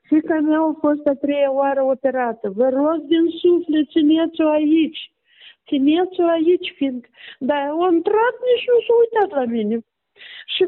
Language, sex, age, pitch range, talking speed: Romanian, female, 50-69, 285-365 Hz, 145 wpm